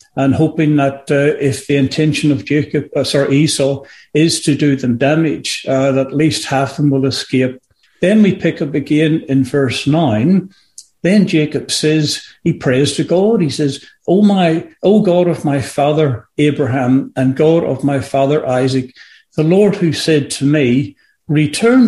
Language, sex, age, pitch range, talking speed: English, male, 60-79, 135-170 Hz, 175 wpm